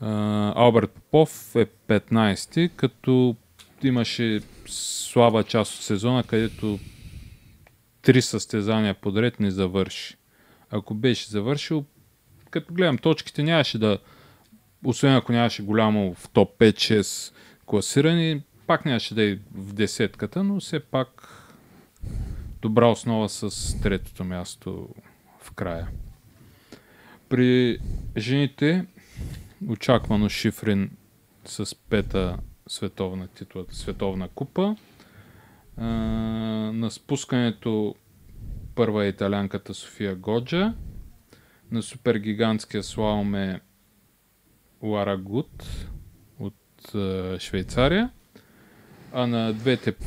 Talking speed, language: 95 wpm, Bulgarian